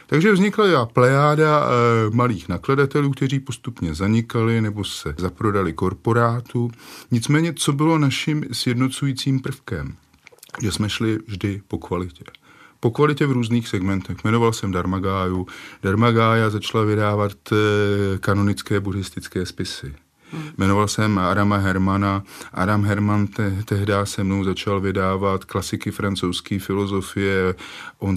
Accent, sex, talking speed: native, male, 120 wpm